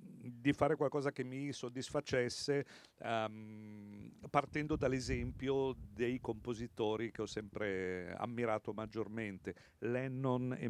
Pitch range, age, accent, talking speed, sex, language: 115-150 Hz, 50-69, native, 95 wpm, male, Italian